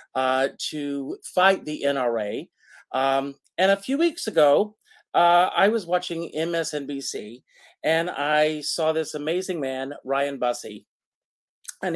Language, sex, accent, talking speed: English, male, American, 125 wpm